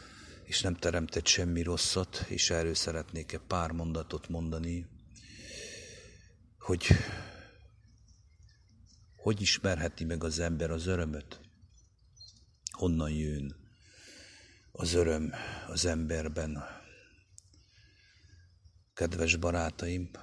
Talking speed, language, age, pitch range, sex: 80 wpm, English, 50-69, 80-95 Hz, male